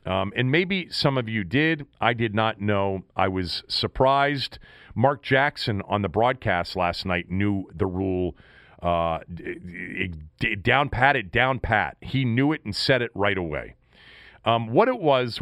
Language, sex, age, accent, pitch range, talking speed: English, male, 40-59, American, 95-140 Hz, 165 wpm